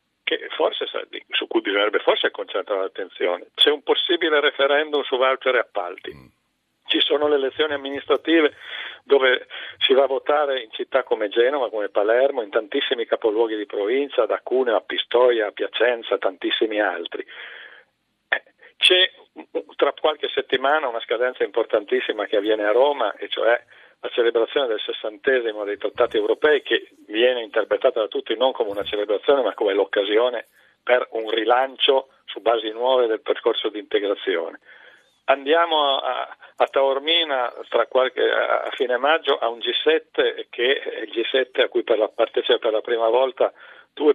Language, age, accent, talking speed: Italian, 50-69, native, 150 wpm